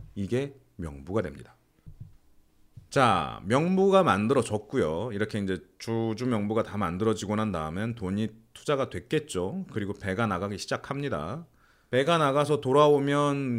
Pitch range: 100-145 Hz